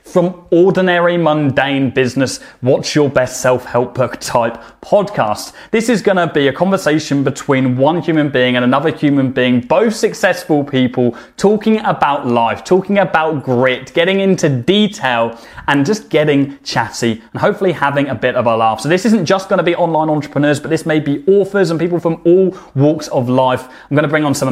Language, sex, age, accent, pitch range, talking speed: English, male, 20-39, British, 130-180 Hz, 190 wpm